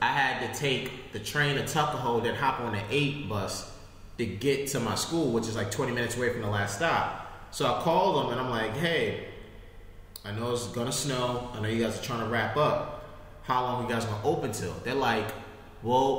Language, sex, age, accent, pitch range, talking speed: English, male, 20-39, American, 120-170 Hz, 235 wpm